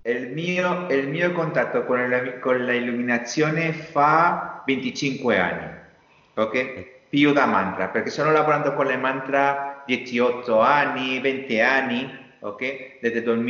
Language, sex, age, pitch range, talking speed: Italian, male, 40-59, 115-140 Hz, 125 wpm